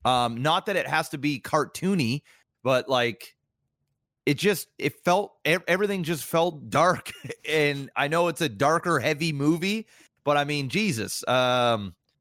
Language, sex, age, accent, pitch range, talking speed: English, male, 30-49, American, 115-155 Hz, 150 wpm